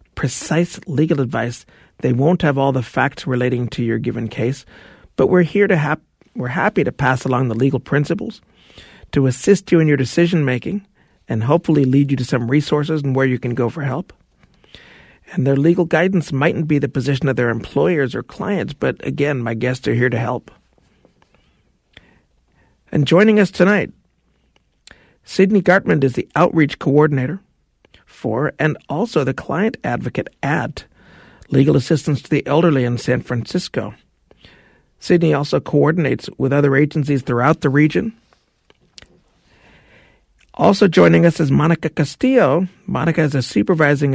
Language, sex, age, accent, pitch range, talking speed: English, male, 50-69, American, 125-165 Hz, 155 wpm